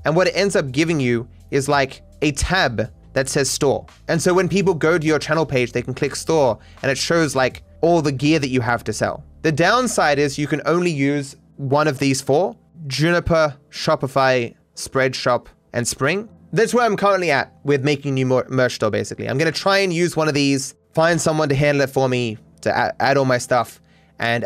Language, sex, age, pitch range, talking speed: English, male, 20-39, 130-165 Hz, 215 wpm